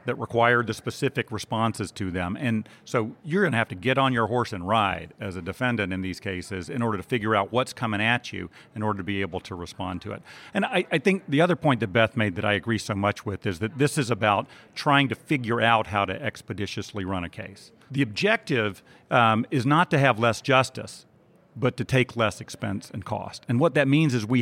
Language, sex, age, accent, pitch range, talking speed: English, male, 40-59, American, 105-130 Hz, 240 wpm